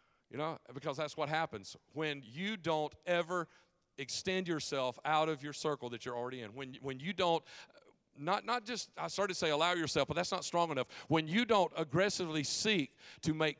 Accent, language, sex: American, English, male